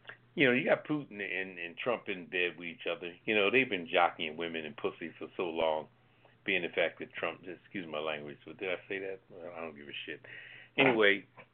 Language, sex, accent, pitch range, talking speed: English, male, American, 85-110 Hz, 225 wpm